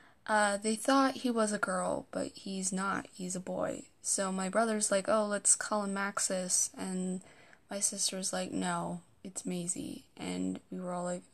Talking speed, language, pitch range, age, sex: 180 wpm, English, 190-240 Hz, 10-29, female